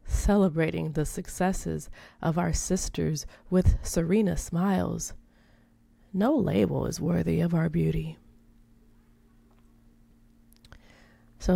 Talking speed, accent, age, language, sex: 90 wpm, American, 20-39, English, female